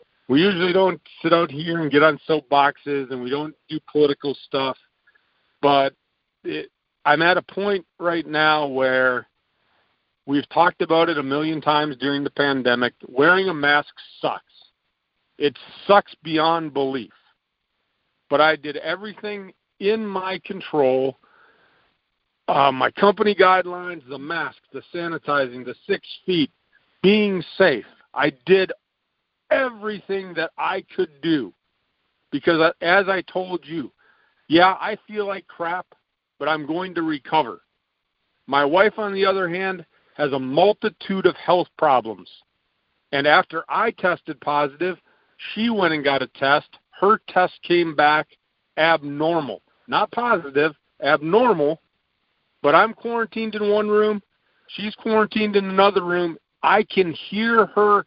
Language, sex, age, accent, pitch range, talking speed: English, male, 50-69, American, 145-195 Hz, 135 wpm